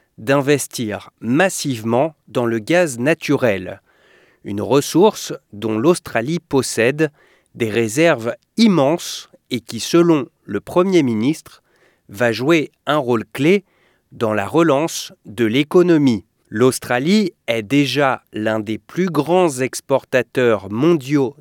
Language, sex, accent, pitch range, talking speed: English, male, French, 115-175 Hz, 110 wpm